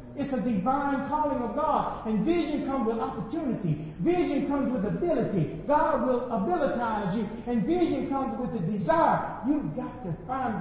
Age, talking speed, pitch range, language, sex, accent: 50-69, 165 wpm, 165-270 Hz, English, male, American